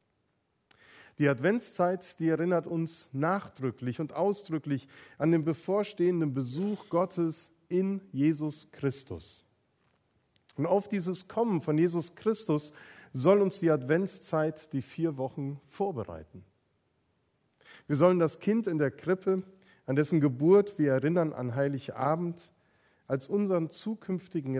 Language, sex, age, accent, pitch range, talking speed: German, male, 40-59, German, 135-180 Hz, 115 wpm